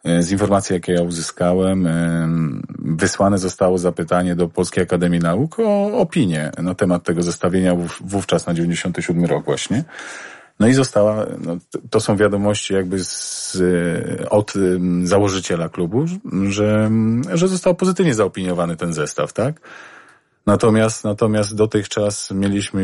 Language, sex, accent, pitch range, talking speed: Polish, male, native, 90-110 Hz, 125 wpm